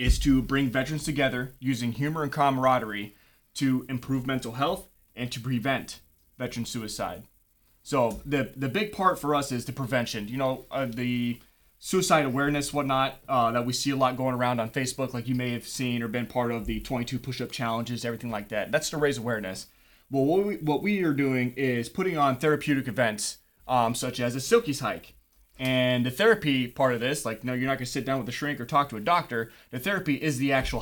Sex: male